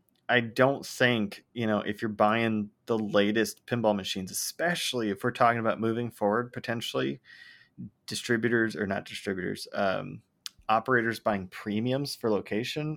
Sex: male